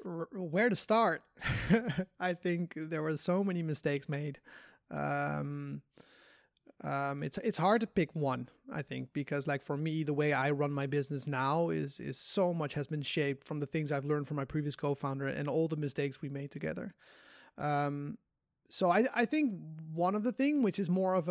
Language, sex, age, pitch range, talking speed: English, male, 30-49, 145-185 Hz, 195 wpm